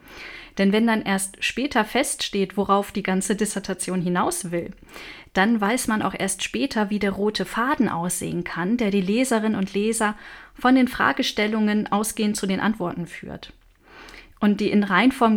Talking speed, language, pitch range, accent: 160 wpm, German, 190-220 Hz, German